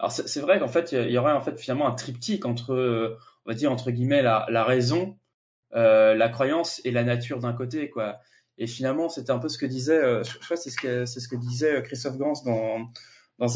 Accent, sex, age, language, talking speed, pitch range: French, male, 20-39, French, 230 wpm, 115-140 Hz